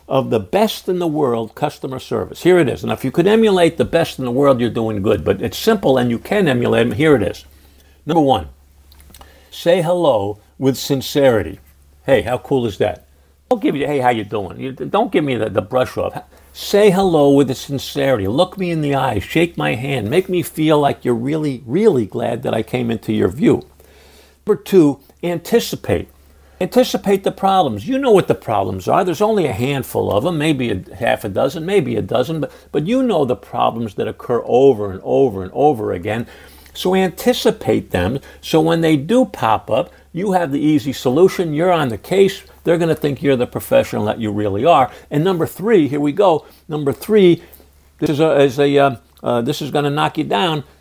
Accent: American